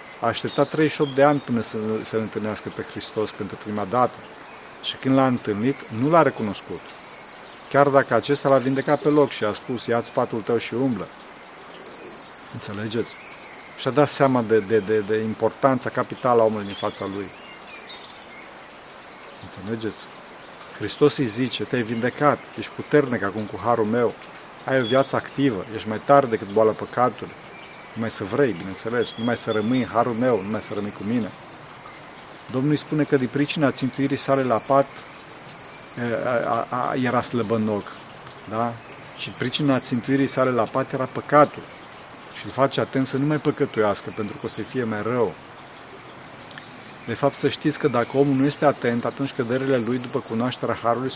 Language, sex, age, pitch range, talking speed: Romanian, male, 40-59, 110-135 Hz, 170 wpm